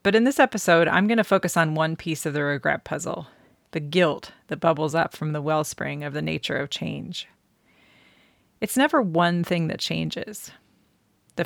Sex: female